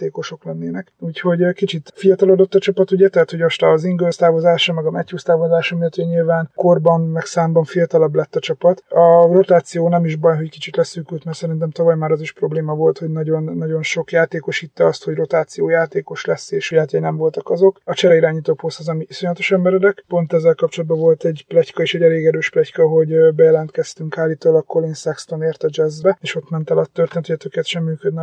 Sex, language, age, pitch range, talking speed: male, Hungarian, 30-49, 160-175 Hz, 190 wpm